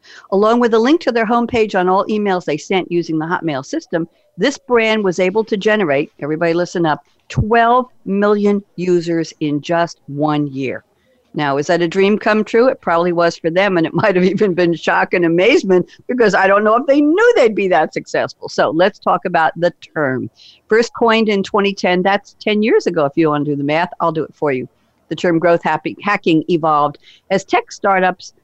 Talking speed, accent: 205 wpm, American